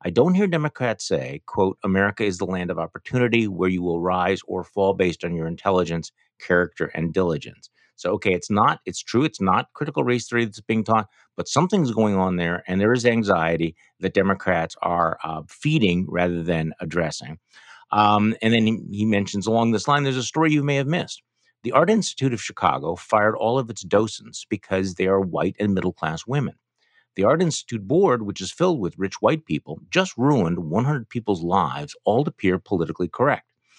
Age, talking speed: 50-69, 195 wpm